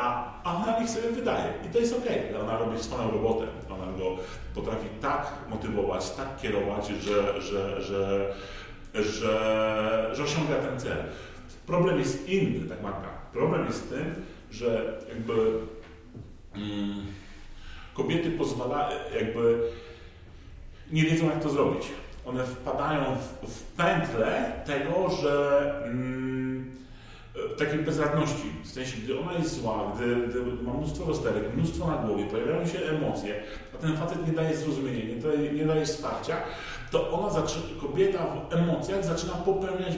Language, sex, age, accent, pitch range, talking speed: Polish, male, 40-59, native, 105-155 Hz, 140 wpm